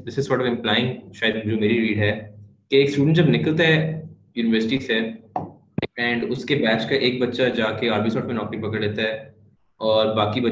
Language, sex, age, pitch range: Urdu, male, 20-39, 105-135 Hz